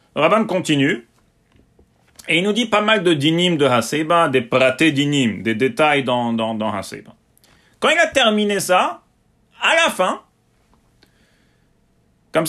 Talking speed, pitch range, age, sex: 145 wpm, 130-195 Hz, 40-59, male